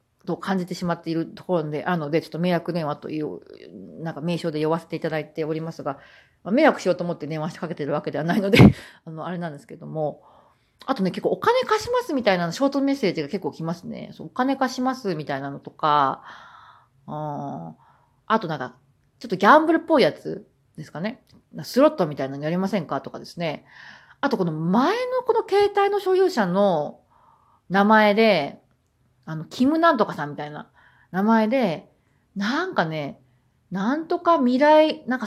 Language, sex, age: Japanese, female, 40-59